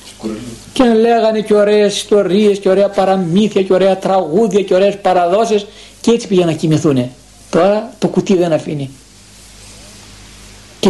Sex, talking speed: male, 140 wpm